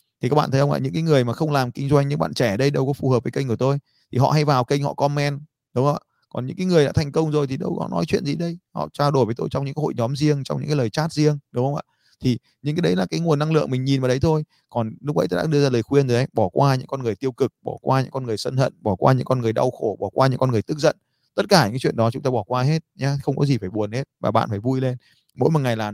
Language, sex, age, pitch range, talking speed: Vietnamese, male, 20-39, 115-145 Hz, 345 wpm